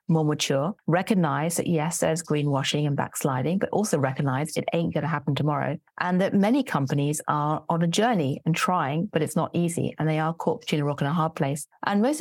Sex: female